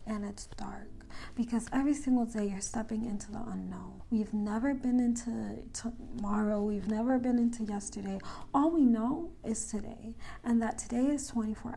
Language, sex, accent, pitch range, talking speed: English, female, American, 210-255 Hz, 165 wpm